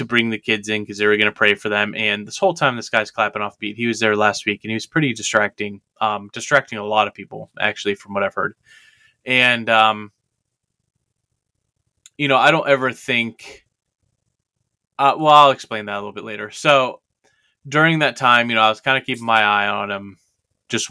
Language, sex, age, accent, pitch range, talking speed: English, male, 20-39, American, 105-125 Hz, 215 wpm